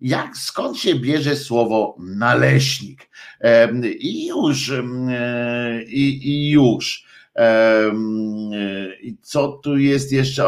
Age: 50-69